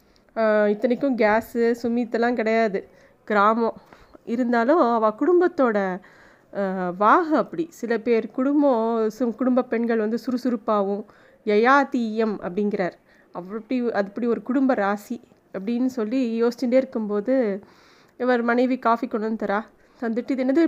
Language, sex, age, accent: Tamil, female, 20-39, native